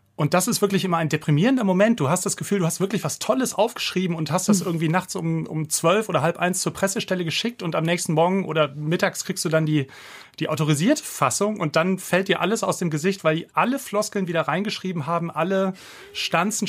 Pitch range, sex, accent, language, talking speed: 155-190 Hz, male, German, German, 225 wpm